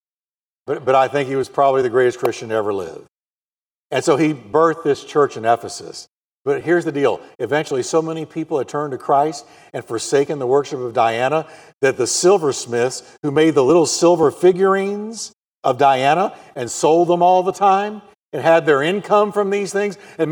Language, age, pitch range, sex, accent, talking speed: English, 50-69, 165-215 Hz, male, American, 190 wpm